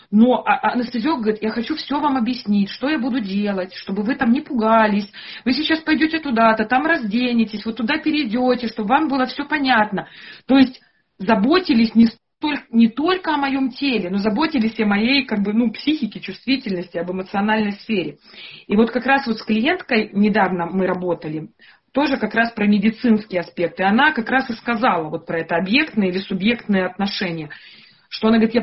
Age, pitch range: 30-49, 200-260 Hz